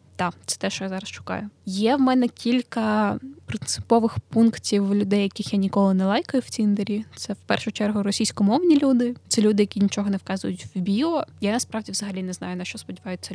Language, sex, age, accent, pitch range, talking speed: Ukrainian, female, 10-29, native, 195-220 Hz, 200 wpm